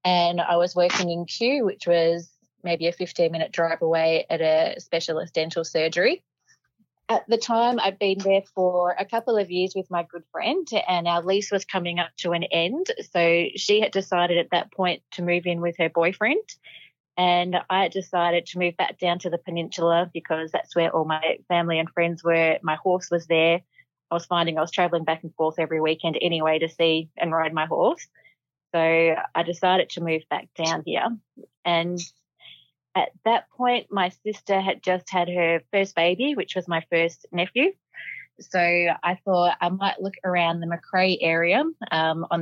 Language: English